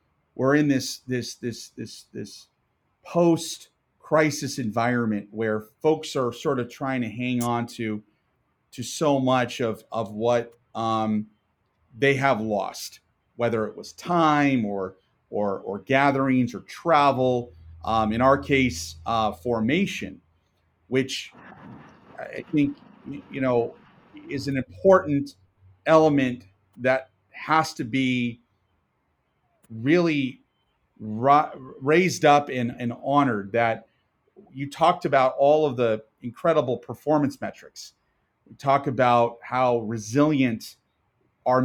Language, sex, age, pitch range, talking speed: English, male, 40-59, 115-140 Hz, 115 wpm